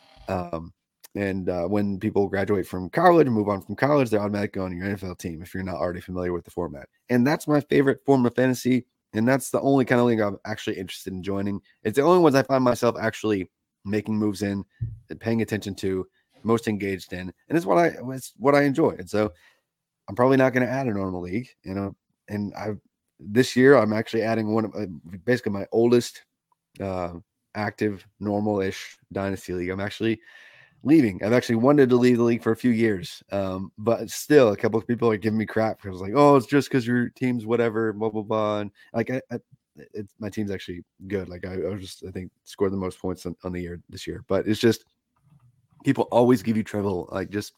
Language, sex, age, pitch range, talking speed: English, male, 30-49, 95-125 Hz, 220 wpm